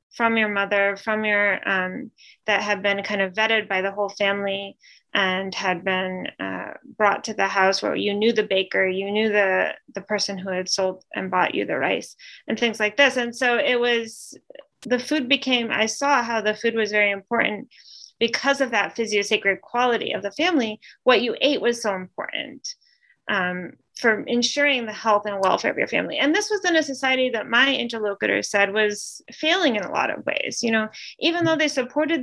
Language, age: English, 30-49